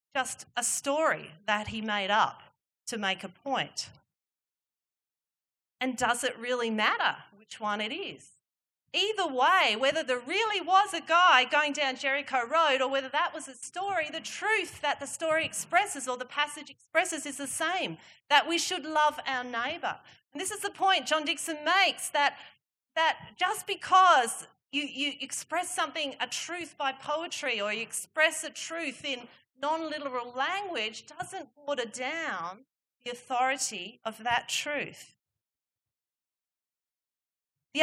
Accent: Australian